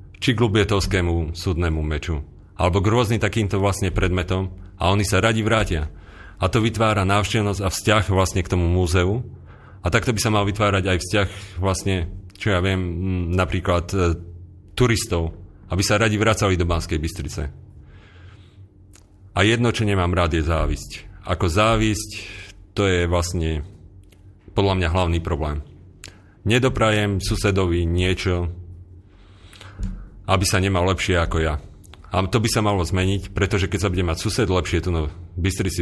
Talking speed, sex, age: 145 wpm, male, 40-59